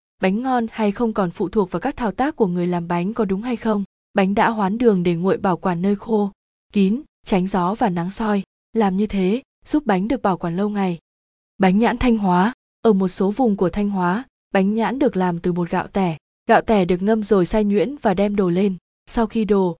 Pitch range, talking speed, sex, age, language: 180-225 Hz, 235 wpm, female, 20-39, Vietnamese